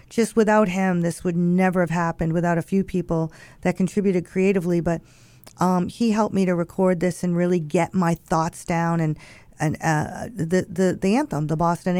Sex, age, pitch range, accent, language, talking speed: female, 40-59, 170-195 Hz, American, English, 190 wpm